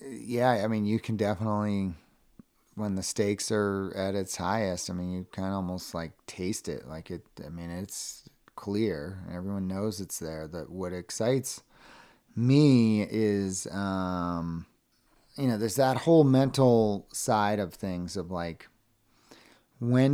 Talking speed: 150 wpm